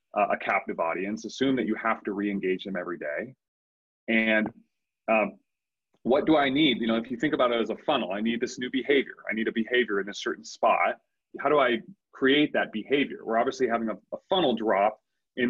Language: English